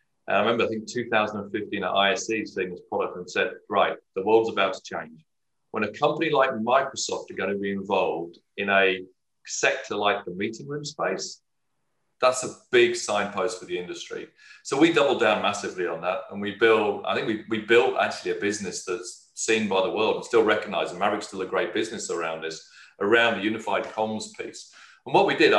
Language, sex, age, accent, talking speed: English, male, 40-59, British, 205 wpm